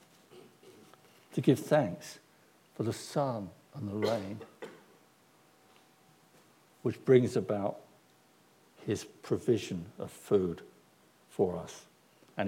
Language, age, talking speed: English, 60-79, 90 wpm